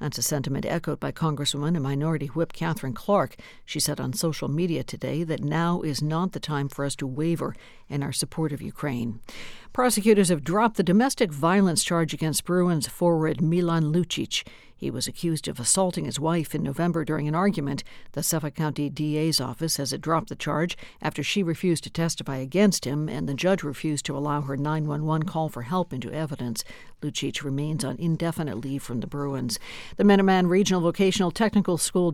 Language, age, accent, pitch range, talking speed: English, 60-79, American, 140-175 Hz, 185 wpm